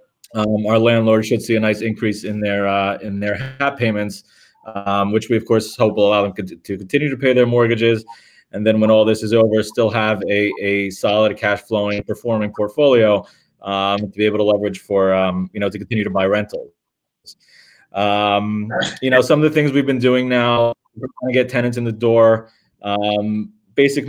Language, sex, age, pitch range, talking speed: English, male, 30-49, 105-120 Hz, 200 wpm